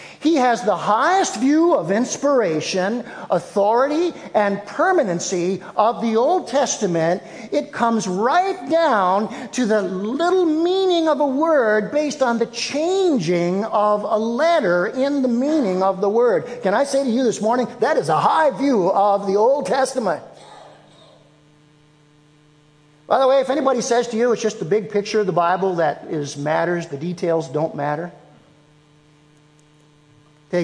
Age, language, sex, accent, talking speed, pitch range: 50-69, English, male, American, 155 wpm, 150-245 Hz